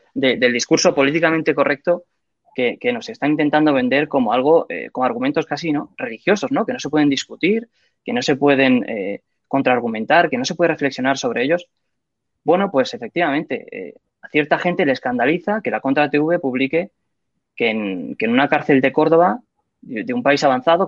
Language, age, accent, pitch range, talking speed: Spanish, 20-39, Spanish, 135-180 Hz, 185 wpm